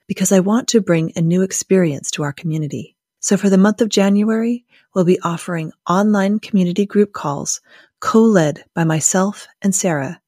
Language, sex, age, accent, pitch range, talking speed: English, female, 30-49, American, 165-200 Hz, 170 wpm